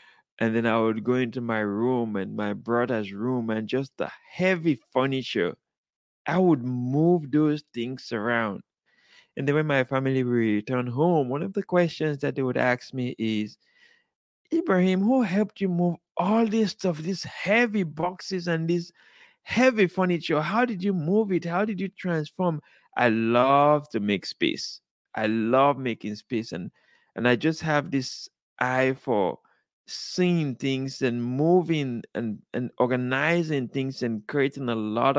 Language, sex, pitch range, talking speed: English, male, 115-160 Hz, 160 wpm